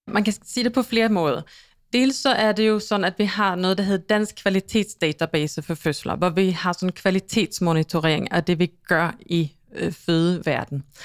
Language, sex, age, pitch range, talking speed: Danish, female, 30-49, 165-210 Hz, 195 wpm